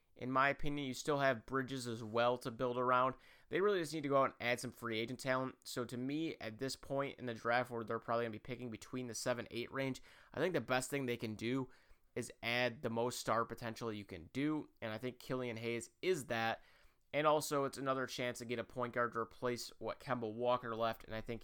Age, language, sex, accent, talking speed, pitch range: 30-49, English, male, American, 245 wpm, 115-140 Hz